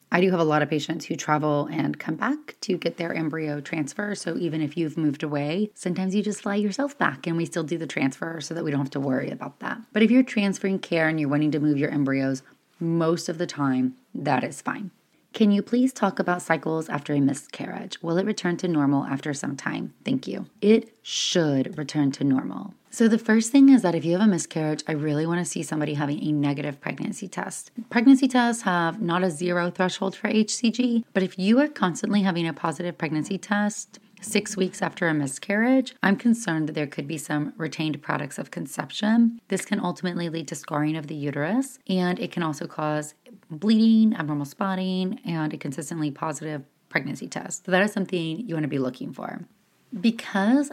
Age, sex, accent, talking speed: 30-49, female, American, 210 wpm